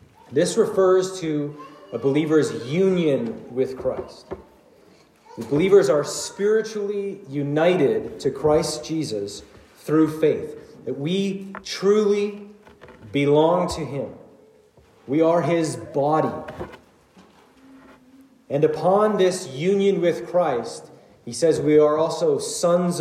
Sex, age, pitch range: male, 40-59, 155-200 Hz